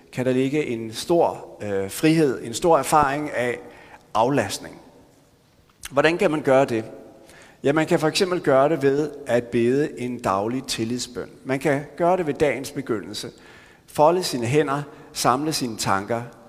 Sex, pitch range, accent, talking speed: male, 120-155 Hz, native, 150 wpm